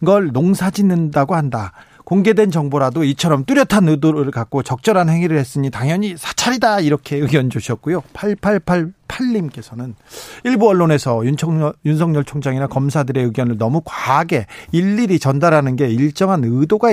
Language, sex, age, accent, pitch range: Korean, male, 40-59, native, 135-185 Hz